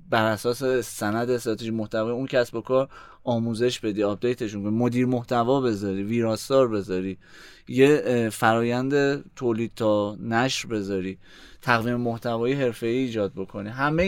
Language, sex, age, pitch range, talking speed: Persian, male, 20-39, 110-130 Hz, 120 wpm